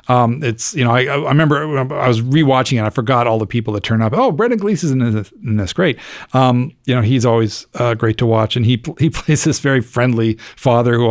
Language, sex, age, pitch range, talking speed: English, male, 40-59, 115-145 Hz, 255 wpm